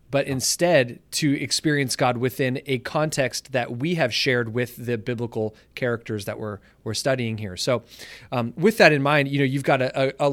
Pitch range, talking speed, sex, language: 120-145 Hz, 200 wpm, male, English